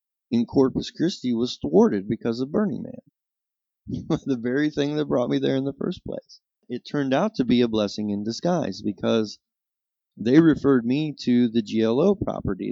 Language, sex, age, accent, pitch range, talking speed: English, male, 20-39, American, 105-140 Hz, 175 wpm